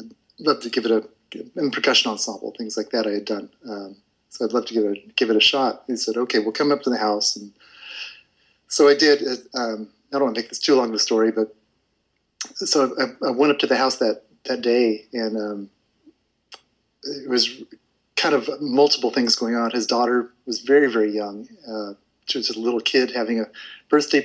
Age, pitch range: 30-49, 110-130 Hz